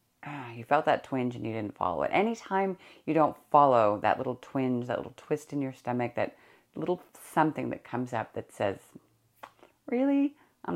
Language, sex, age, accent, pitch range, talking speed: English, female, 30-49, American, 120-150 Hz, 180 wpm